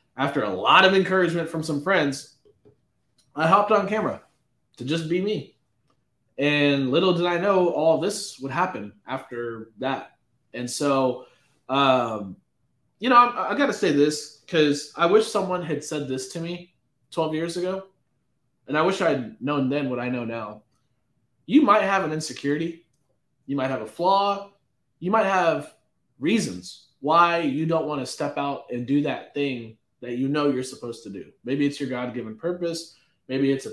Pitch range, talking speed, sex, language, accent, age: 130-170 Hz, 180 wpm, male, English, American, 20-39